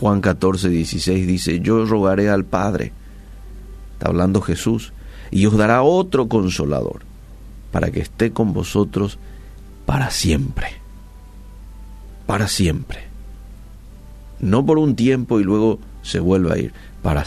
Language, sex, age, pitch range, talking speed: Spanish, male, 50-69, 95-110 Hz, 125 wpm